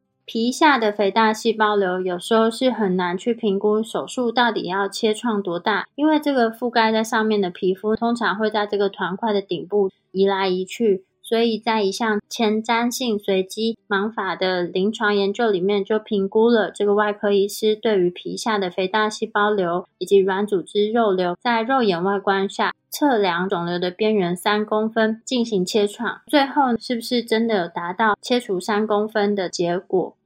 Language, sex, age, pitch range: Chinese, female, 20-39, 195-225 Hz